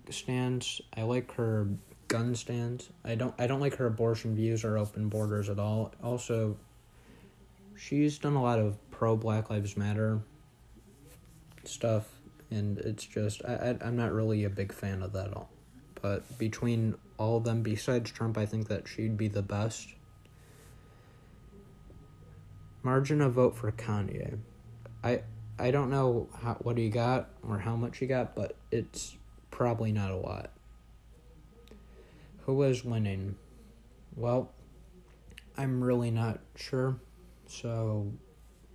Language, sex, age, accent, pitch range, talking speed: English, male, 20-39, American, 105-120 Hz, 140 wpm